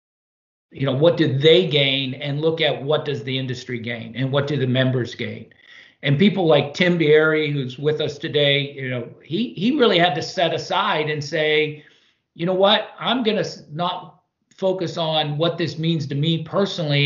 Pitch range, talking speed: 135-170 Hz, 195 wpm